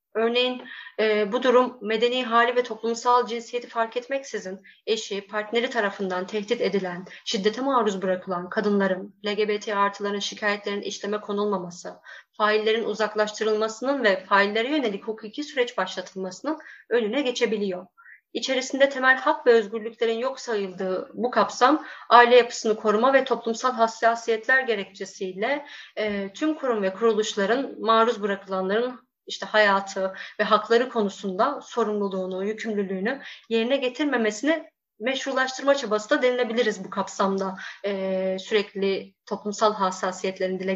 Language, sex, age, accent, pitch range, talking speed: Turkish, female, 30-49, native, 200-250 Hz, 115 wpm